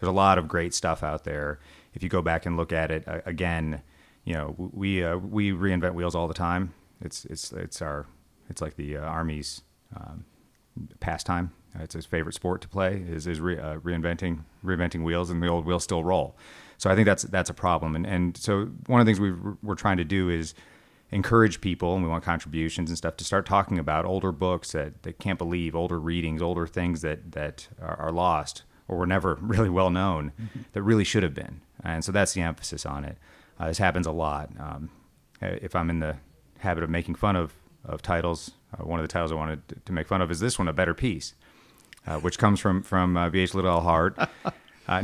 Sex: male